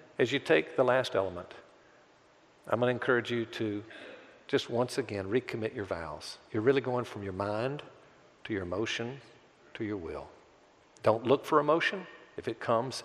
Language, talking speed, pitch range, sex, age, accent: English, 170 wpm, 105-120 Hz, male, 50-69, American